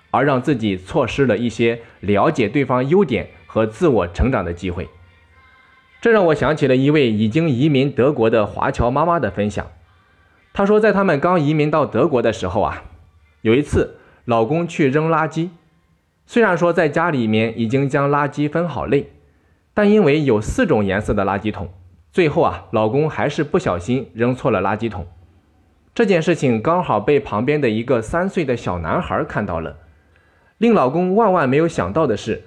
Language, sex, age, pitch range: Chinese, male, 20-39, 90-155 Hz